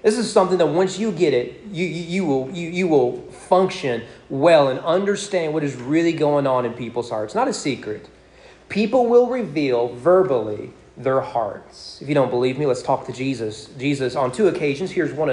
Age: 30-49